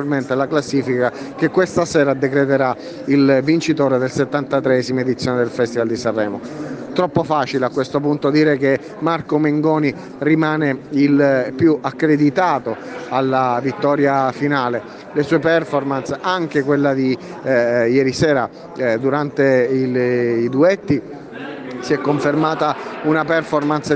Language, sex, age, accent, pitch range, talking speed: Italian, male, 30-49, native, 135-155 Hz, 125 wpm